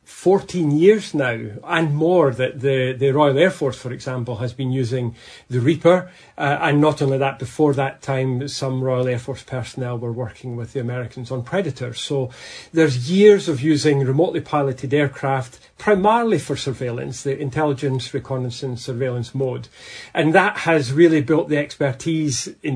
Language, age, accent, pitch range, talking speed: English, 40-59, British, 130-150 Hz, 165 wpm